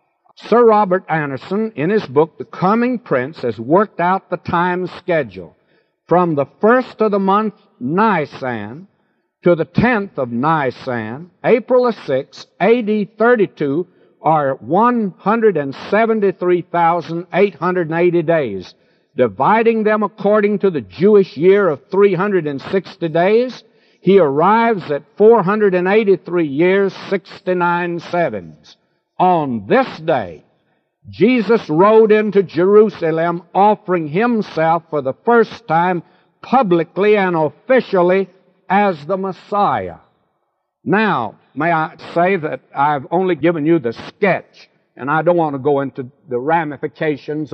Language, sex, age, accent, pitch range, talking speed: English, male, 60-79, American, 155-205 Hz, 115 wpm